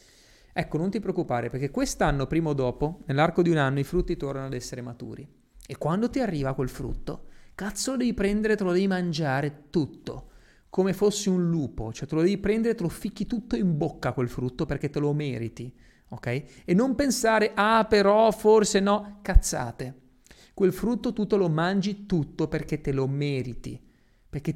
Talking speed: 185 wpm